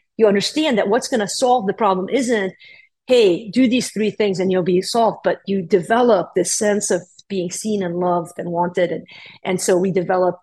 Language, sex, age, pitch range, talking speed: English, female, 50-69, 185-245 Hz, 205 wpm